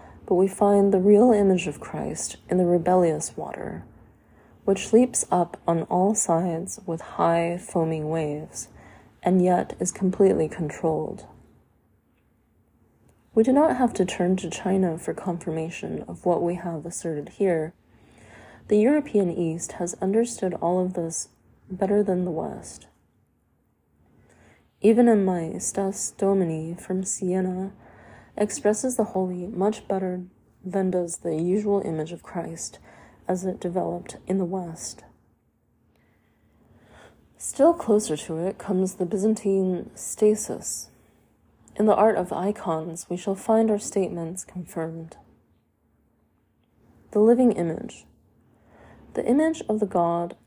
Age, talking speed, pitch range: 20-39, 125 wpm, 170-205 Hz